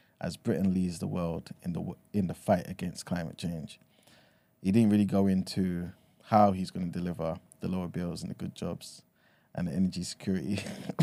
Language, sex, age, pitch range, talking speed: English, male, 20-39, 95-110 Hz, 185 wpm